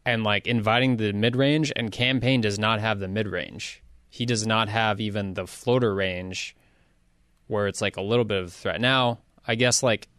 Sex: male